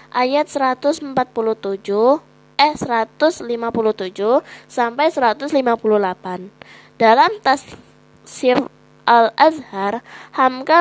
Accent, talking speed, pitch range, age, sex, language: native, 55 wpm, 215-270 Hz, 20-39, female, Indonesian